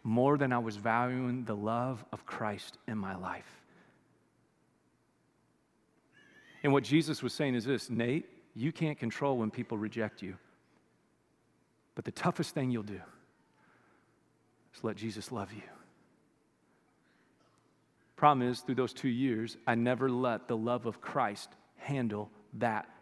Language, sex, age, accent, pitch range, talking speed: English, male, 40-59, American, 125-205 Hz, 140 wpm